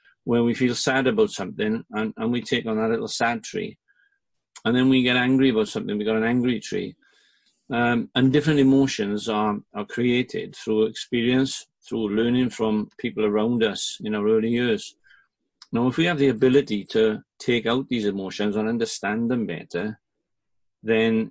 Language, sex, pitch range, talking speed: English, male, 110-130 Hz, 175 wpm